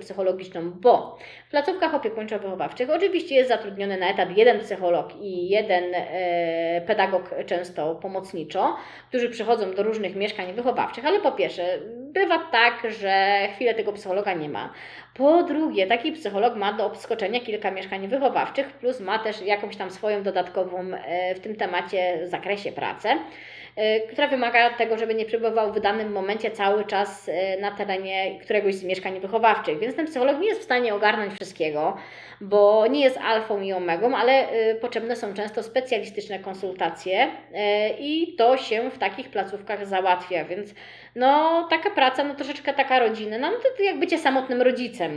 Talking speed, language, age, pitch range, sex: 160 wpm, Polish, 20-39, 195-245 Hz, female